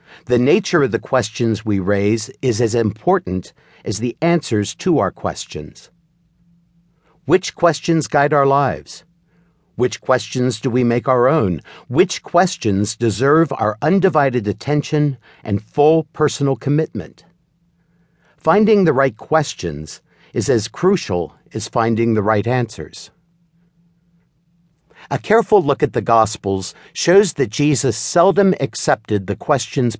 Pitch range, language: 120-170 Hz, English